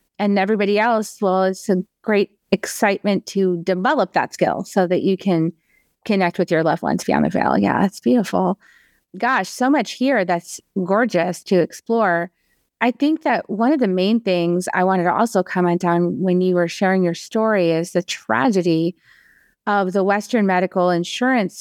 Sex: female